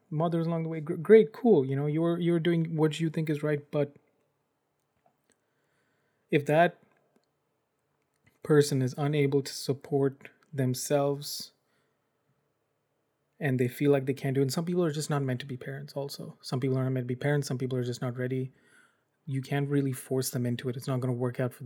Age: 20-39